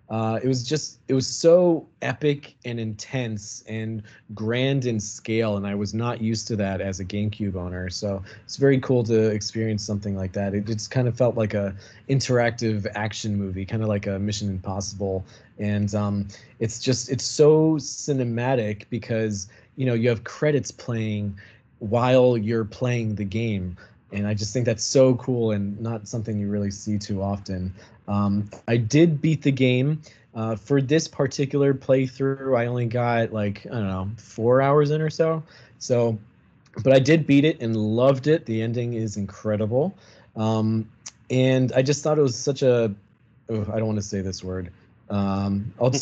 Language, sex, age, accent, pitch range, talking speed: English, male, 20-39, American, 105-130 Hz, 185 wpm